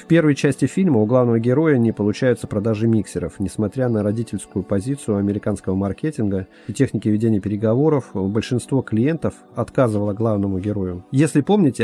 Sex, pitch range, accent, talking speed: male, 105-135 Hz, native, 140 wpm